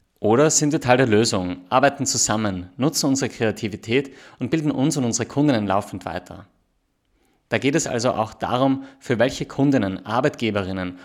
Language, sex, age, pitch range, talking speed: English, male, 30-49, 105-130 Hz, 160 wpm